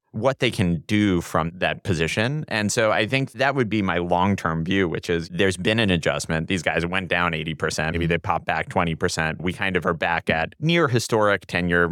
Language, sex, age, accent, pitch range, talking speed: English, male, 30-49, American, 85-105 Hz, 210 wpm